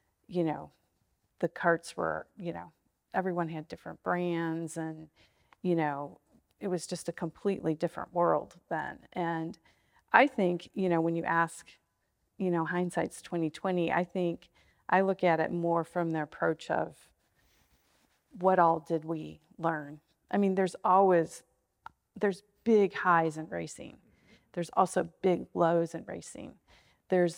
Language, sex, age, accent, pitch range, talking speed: English, female, 40-59, American, 165-185 Hz, 145 wpm